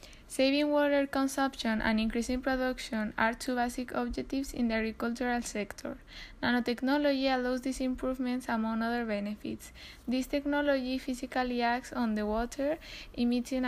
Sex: female